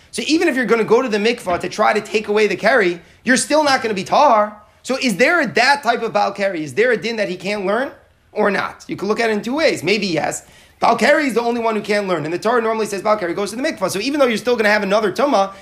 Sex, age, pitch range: male, 30-49, 195-245 Hz